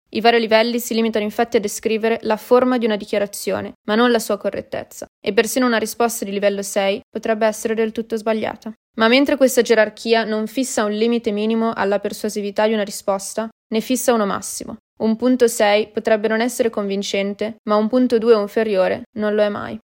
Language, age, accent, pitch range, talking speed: Italian, 20-39, native, 210-230 Hz, 195 wpm